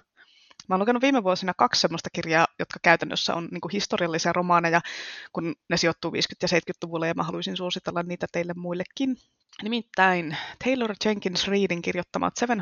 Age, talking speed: 20-39, 150 wpm